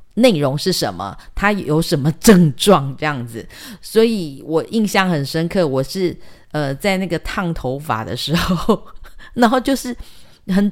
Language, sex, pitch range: Chinese, female, 145-220 Hz